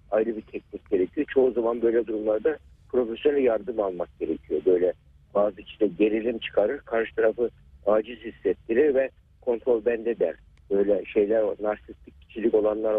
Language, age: Turkish, 60-79